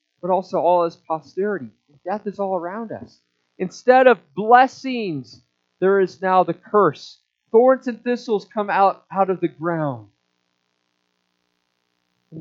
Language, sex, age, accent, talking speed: English, male, 40-59, American, 135 wpm